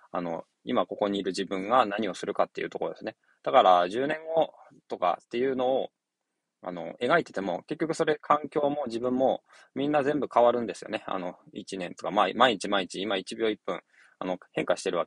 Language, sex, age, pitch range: Japanese, male, 20-39, 110-155 Hz